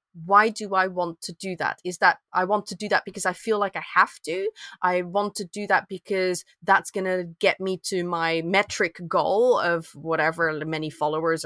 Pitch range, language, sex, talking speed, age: 175-210 Hz, English, female, 210 wpm, 20-39